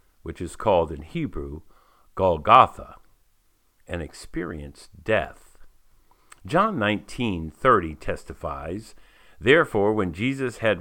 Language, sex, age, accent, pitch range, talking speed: English, male, 50-69, American, 75-105 Hz, 90 wpm